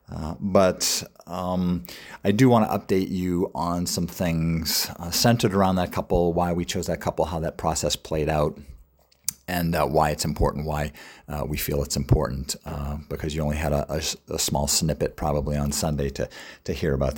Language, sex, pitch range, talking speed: English, male, 75-90 Hz, 190 wpm